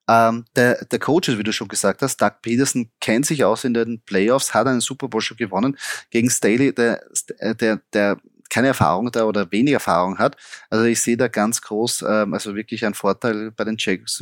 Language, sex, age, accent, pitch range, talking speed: German, male, 30-49, German, 105-125 Hz, 205 wpm